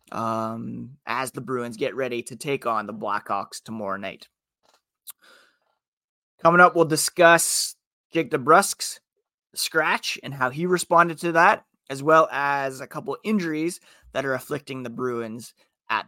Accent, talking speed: American, 140 wpm